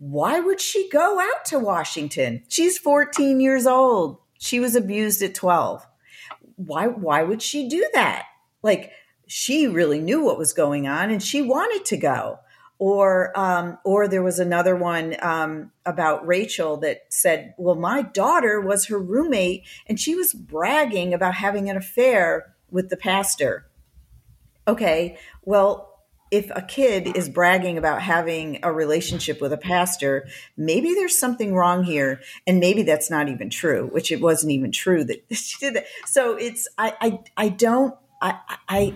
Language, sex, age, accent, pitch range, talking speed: English, female, 50-69, American, 160-225 Hz, 160 wpm